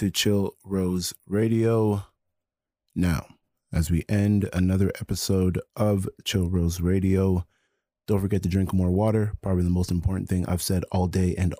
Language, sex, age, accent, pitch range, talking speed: English, male, 30-49, American, 90-100 Hz, 155 wpm